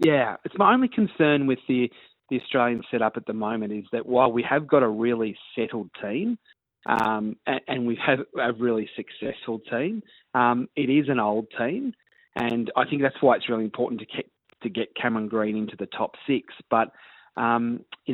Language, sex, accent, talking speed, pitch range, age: English, male, Australian, 200 wpm, 110-130 Hz, 30-49